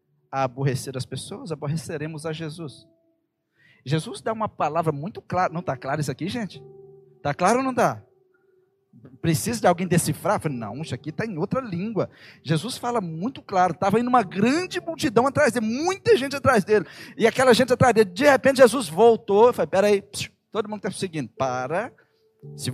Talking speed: 180 wpm